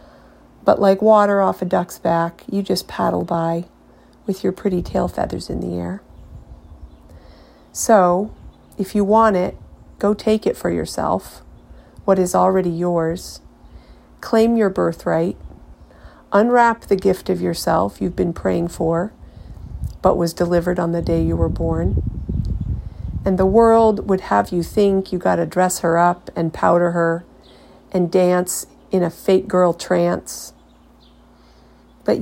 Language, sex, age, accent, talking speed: English, female, 40-59, American, 145 wpm